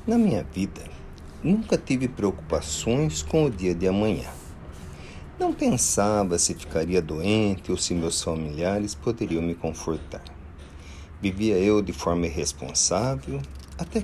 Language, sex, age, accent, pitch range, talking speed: Portuguese, male, 50-69, Brazilian, 75-110 Hz, 125 wpm